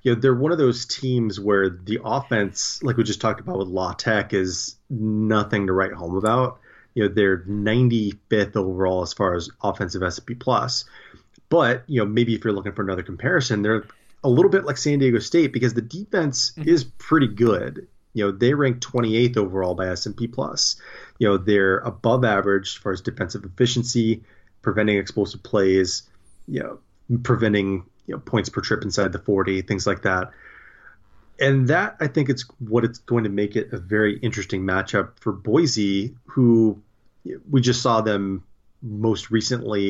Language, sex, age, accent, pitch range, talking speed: English, male, 30-49, American, 100-125 Hz, 180 wpm